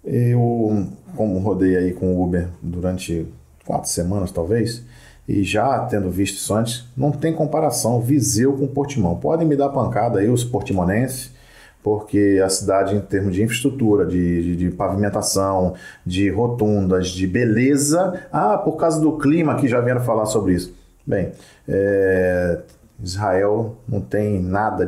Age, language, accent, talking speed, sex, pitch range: 40-59, Portuguese, Brazilian, 145 wpm, male, 100-125 Hz